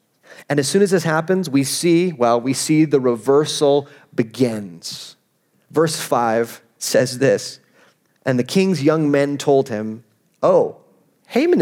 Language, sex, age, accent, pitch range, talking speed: English, male, 30-49, American, 130-195 Hz, 140 wpm